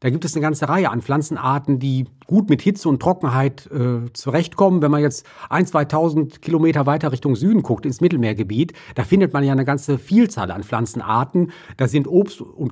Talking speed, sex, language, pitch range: 200 wpm, male, German, 120-150 Hz